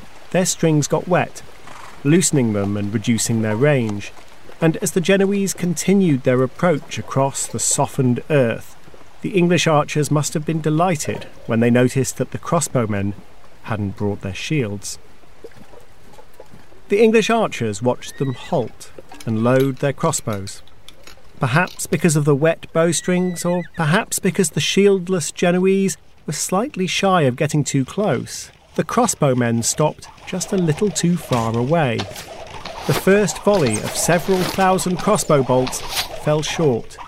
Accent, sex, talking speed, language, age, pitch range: British, male, 140 wpm, English, 40-59, 110-175 Hz